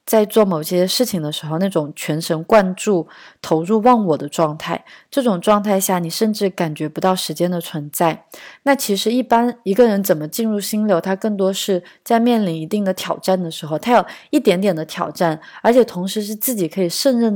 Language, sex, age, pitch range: Chinese, female, 20-39, 160-205 Hz